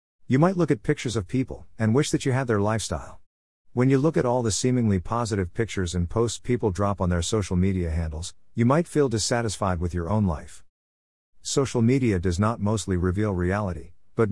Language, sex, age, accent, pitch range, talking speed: English, male, 50-69, American, 90-115 Hz, 200 wpm